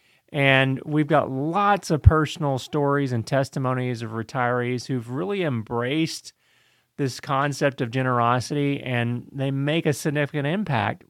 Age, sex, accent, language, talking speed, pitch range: 40-59, male, American, English, 130 wpm, 125-155 Hz